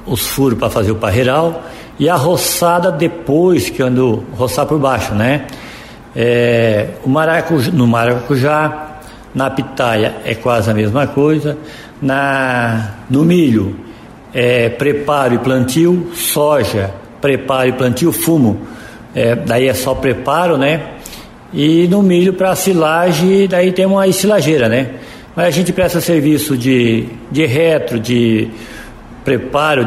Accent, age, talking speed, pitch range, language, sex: Brazilian, 60-79, 140 wpm, 120-155 Hz, Portuguese, male